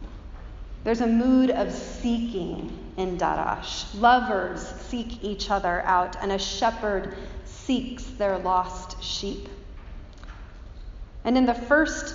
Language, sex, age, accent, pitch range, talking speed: English, female, 40-59, American, 185-230 Hz, 115 wpm